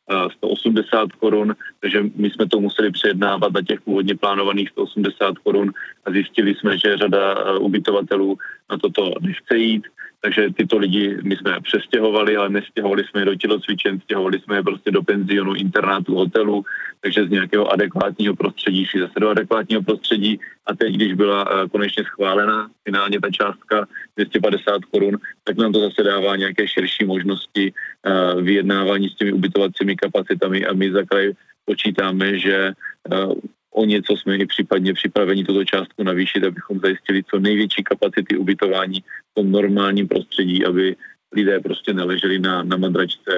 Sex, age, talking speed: male, 30-49, 150 wpm